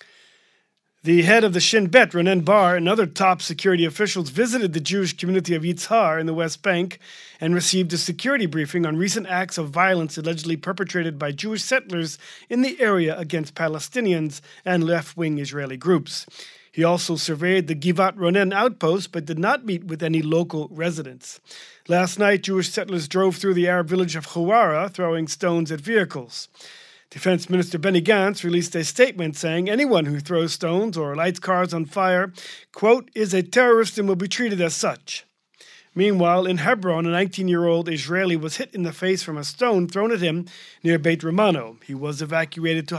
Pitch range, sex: 165-190 Hz, male